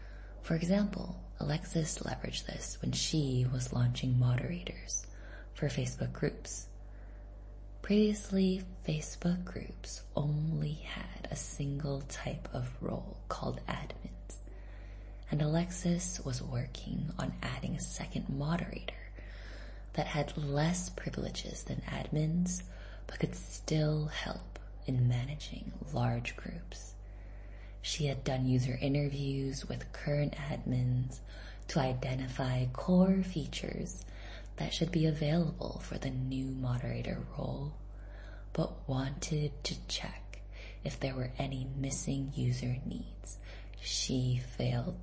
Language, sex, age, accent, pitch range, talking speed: English, female, 20-39, American, 100-150 Hz, 110 wpm